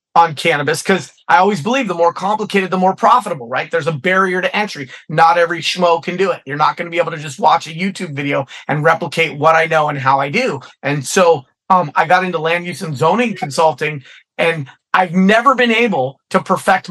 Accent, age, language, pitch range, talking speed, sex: American, 30-49, English, 155-195 Hz, 225 wpm, male